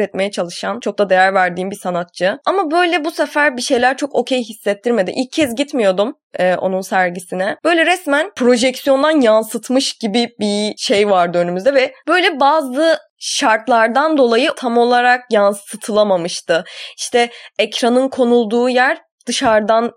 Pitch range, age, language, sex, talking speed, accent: 205-260 Hz, 20-39, Turkish, female, 130 wpm, native